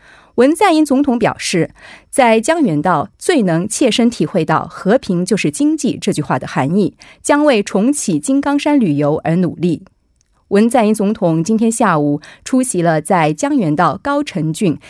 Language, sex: Korean, female